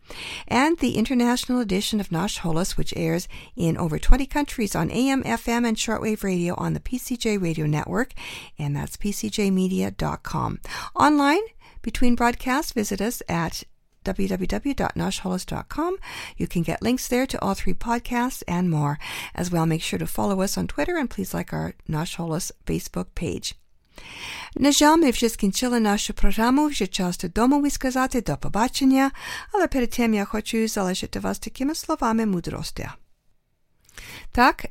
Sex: female